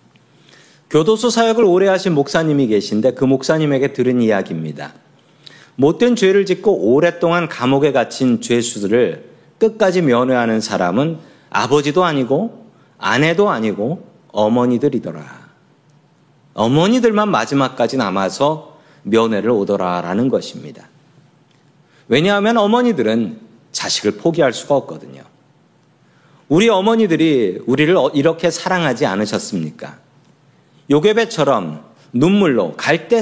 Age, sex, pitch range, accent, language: 40-59, male, 125-185 Hz, native, Korean